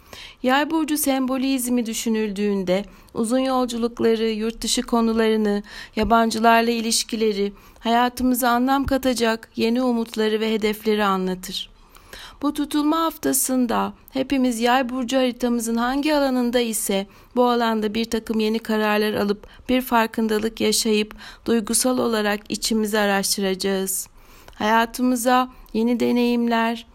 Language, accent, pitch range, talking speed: Turkish, native, 215-250 Hz, 100 wpm